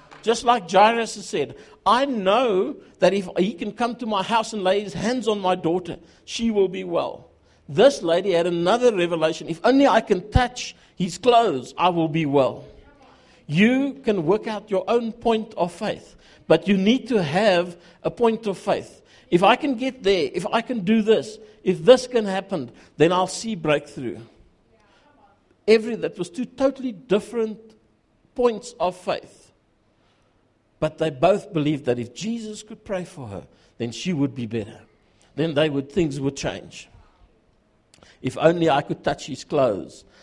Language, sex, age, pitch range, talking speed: English, male, 60-79, 155-225 Hz, 175 wpm